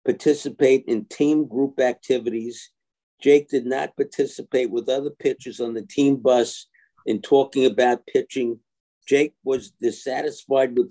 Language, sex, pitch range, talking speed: English, male, 120-145 Hz, 130 wpm